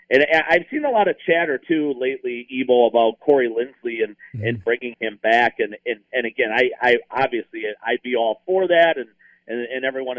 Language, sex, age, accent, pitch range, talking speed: English, male, 50-69, American, 115-170 Hz, 200 wpm